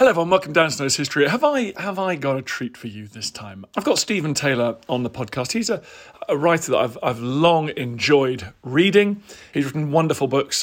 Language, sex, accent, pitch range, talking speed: English, male, British, 125-165 Hz, 225 wpm